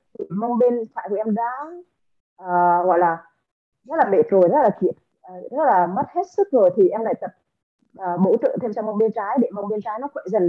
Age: 20-39